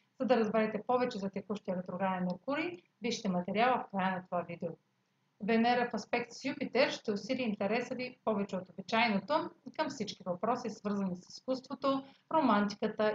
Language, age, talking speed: Bulgarian, 30-49, 160 wpm